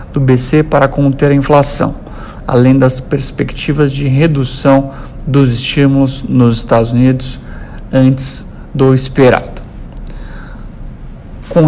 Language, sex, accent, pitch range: Portuguese, male, Brazilian, 125-140 Hz